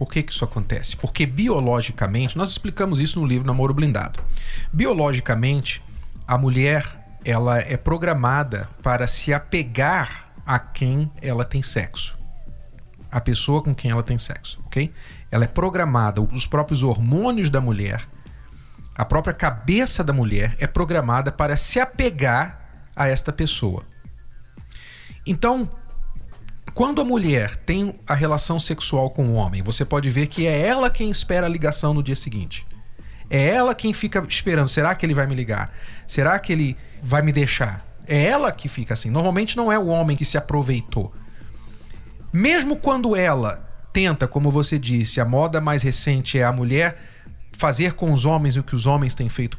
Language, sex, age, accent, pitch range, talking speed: Portuguese, male, 40-59, Brazilian, 120-165 Hz, 160 wpm